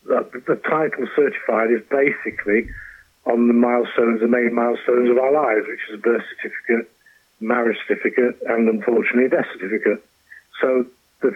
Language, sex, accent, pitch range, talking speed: English, male, British, 115-125 Hz, 145 wpm